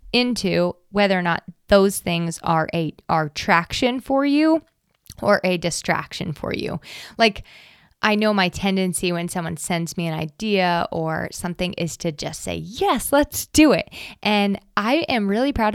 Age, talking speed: 20-39, 165 wpm